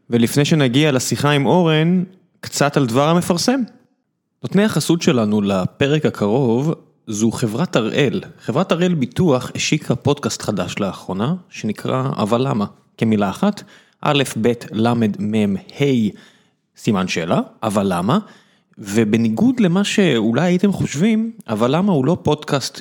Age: 20-39